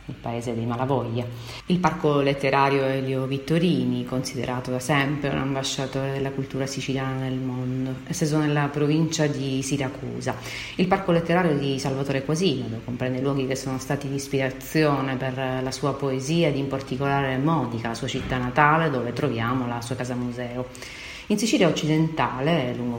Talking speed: 160 wpm